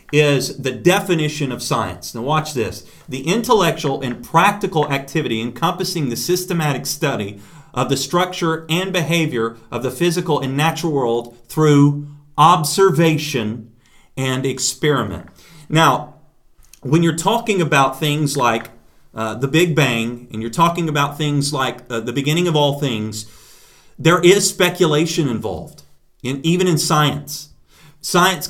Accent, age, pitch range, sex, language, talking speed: American, 40-59, 130-165 Hz, male, English, 135 wpm